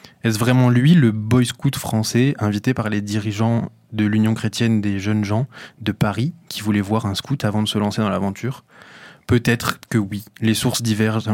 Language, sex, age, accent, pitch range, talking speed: French, male, 20-39, French, 105-120 Hz, 190 wpm